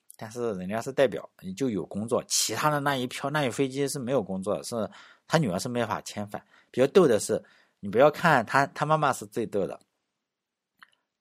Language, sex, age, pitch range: Chinese, male, 50-69, 110-155 Hz